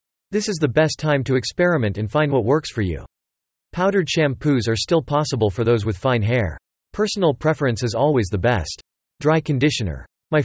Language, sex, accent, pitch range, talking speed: English, male, American, 110-150 Hz, 185 wpm